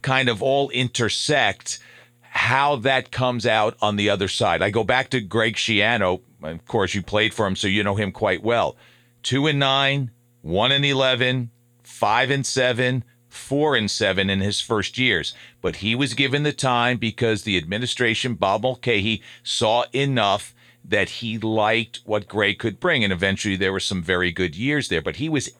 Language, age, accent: English, 50-69, American